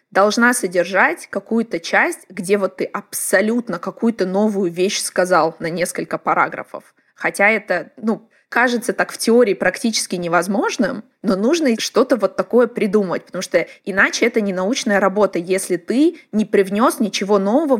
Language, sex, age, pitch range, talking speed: Russian, female, 20-39, 180-220 Hz, 145 wpm